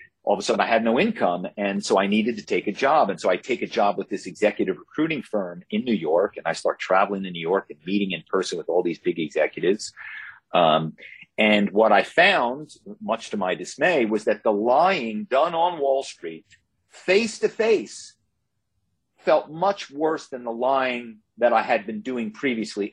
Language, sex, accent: English, male, American